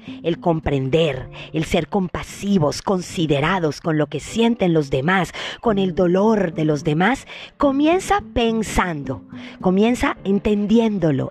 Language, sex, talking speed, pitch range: Spanish, female, 115 wpm, 170-240 Hz